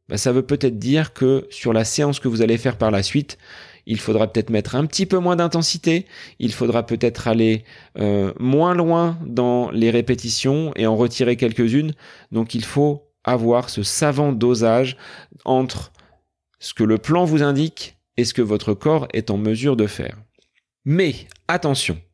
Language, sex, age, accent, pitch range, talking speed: French, male, 30-49, French, 105-145 Hz, 175 wpm